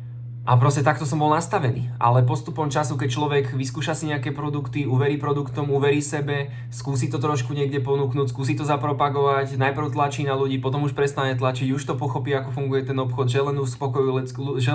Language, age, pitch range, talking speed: Slovak, 20-39, 120-135 Hz, 185 wpm